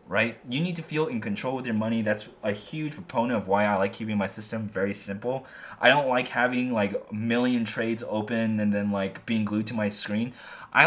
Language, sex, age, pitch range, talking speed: English, male, 20-39, 100-130 Hz, 225 wpm